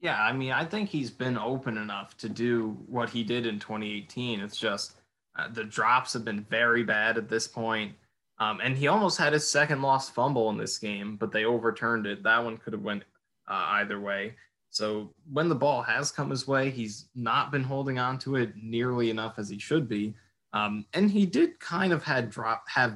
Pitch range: 105-130 Hz